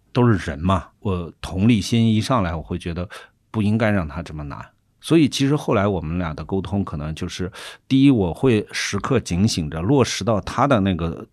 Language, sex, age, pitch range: Chinese, male, 50-69, 90-115 Hz